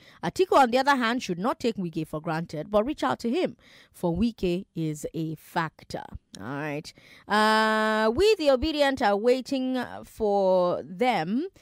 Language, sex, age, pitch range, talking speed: English, female, 20-39, 170-245 Hz, 160 wpm